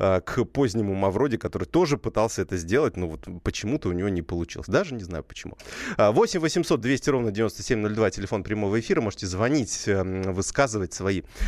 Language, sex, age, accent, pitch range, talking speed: Russian, male, 30-49, native, 95-130 Hz, 160 wpm